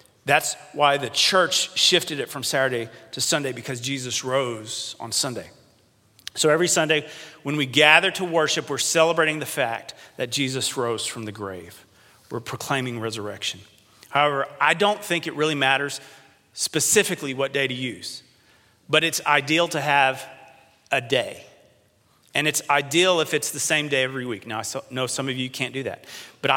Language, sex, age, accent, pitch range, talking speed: English, male, 40-59, American, 125-155 Hz, 170 wpm